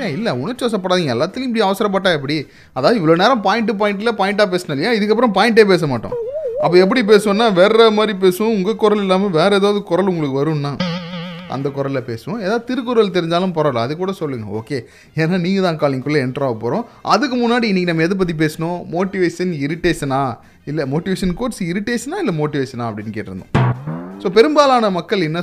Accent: native